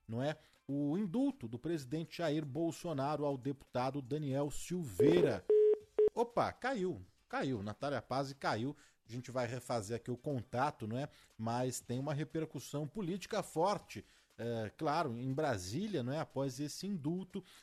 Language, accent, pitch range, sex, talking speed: Portuguese, Brazilian, 120-160 Hz, male, 145 wpm